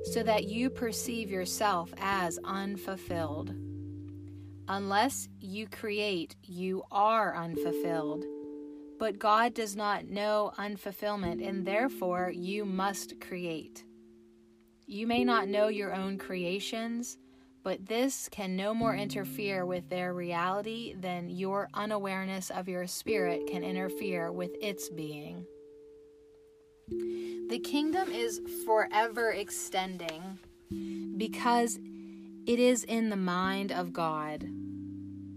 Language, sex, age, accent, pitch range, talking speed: English, female, 30-49, American, 145-205 Hz, 110 wpm